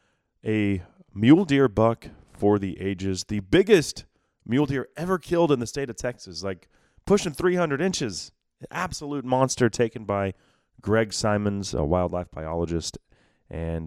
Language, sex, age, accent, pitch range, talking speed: English, male, 30-49, American, 90-125 Hz, 140 wpm